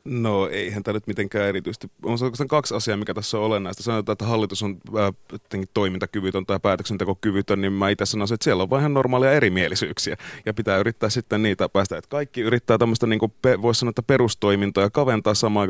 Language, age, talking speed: Finnish, 30-49, 185 wpm